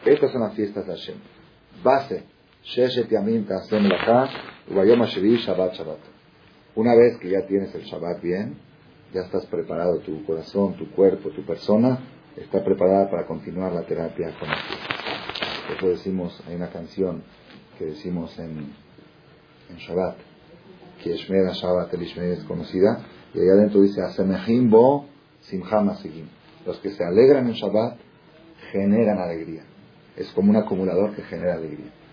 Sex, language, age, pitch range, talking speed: male, Spanish, 40-59, 90-110 Hz, 130 wpm